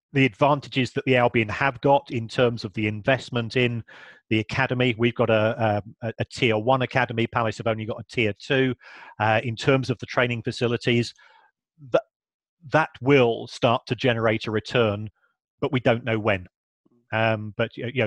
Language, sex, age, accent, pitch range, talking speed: English, male, 40-59, British, 110-125 Hz, 175 wpm